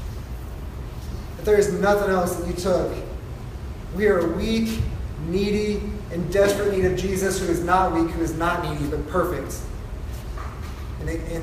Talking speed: 140 wpm